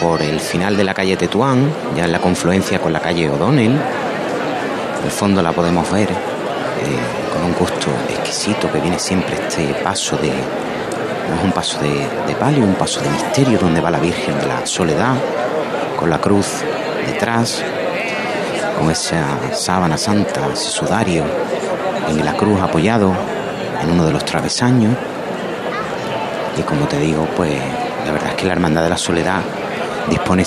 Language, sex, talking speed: Spanish, male, 165 wpm